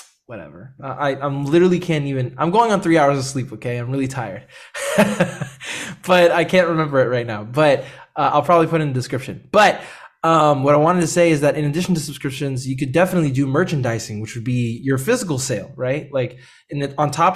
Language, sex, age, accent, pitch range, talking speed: English, male, 20-39, American, 130-160 Hz, 220 wpm